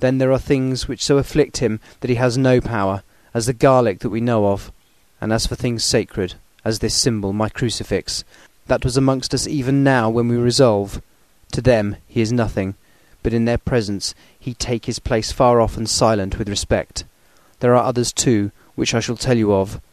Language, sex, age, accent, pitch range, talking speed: English, male, 30-49, British, 105-130 Hz, 205 wpm